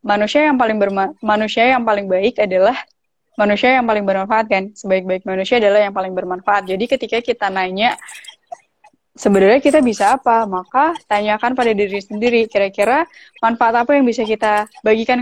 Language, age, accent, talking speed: Indonesian, 20-39, native, 160 wpm